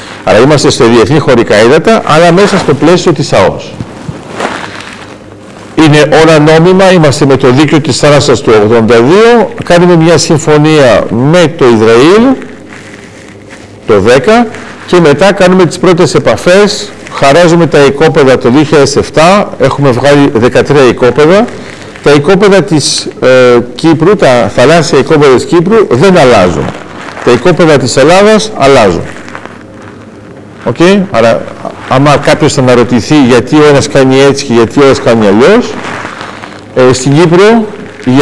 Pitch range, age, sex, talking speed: 130-180 Hz, 50-69, male, 130 wpm